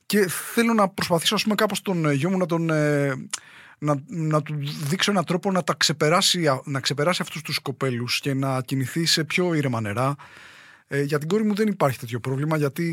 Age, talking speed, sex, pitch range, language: 20-39, 195 wpm, male, 140-175 Hz, English